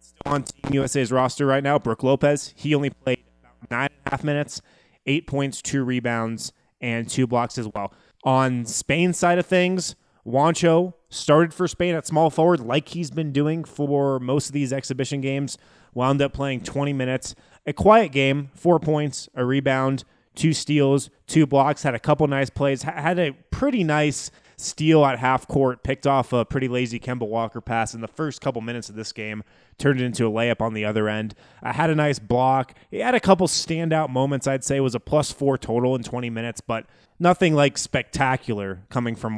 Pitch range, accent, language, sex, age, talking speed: 115-150 Hz, American, English, male, 20-39, 195 wpm